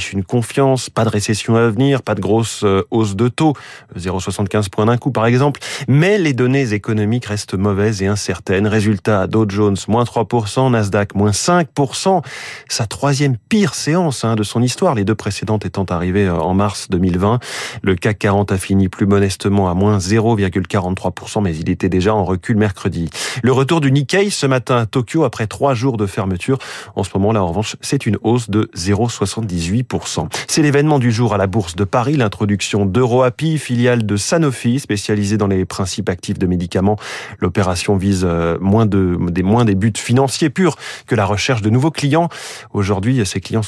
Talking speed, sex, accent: 180 wpm, male, French